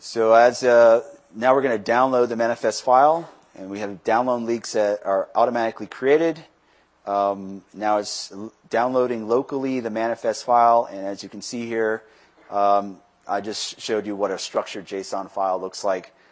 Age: 30-49